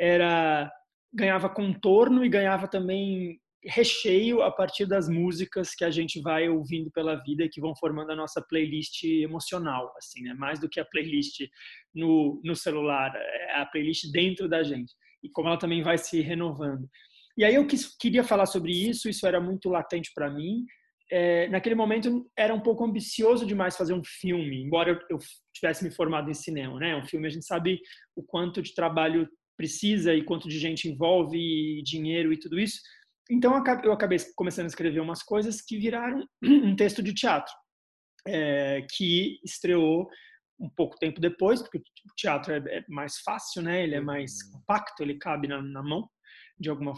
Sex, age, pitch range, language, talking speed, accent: male, 20-39, 160-200 Hz, Portuguese, 180 wpm, Brazilian